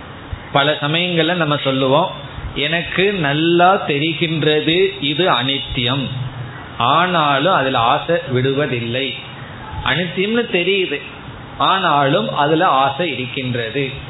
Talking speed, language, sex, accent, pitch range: 80 wpm, Tamil, male, native, 125-165 Hz